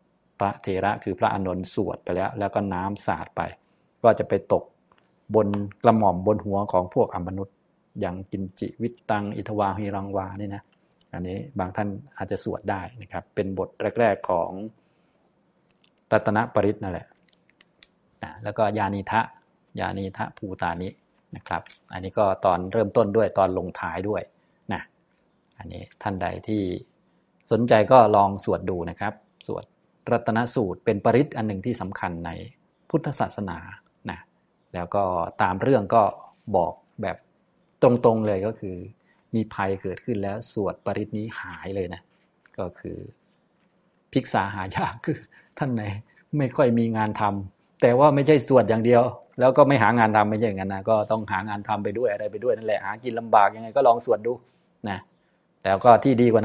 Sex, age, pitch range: male, 20-39, 95-115 Hz